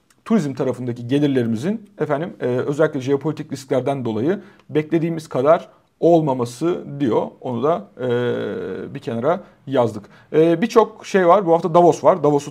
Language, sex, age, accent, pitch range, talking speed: Turkish, male, 40-59, native, 120-150 Hz, 135 wpm